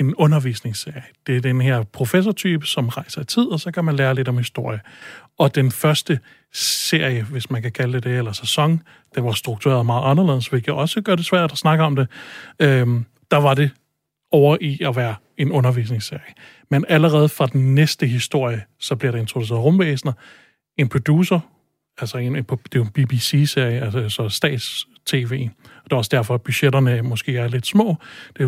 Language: Danish